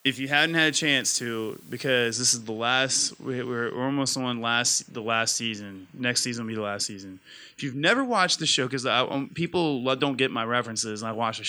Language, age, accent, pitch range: English, 20-39, American, 120-145 Hz